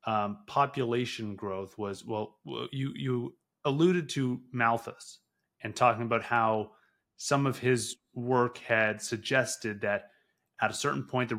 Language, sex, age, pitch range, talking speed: English, male, 30-49, 110-140 Hz, 130 wpm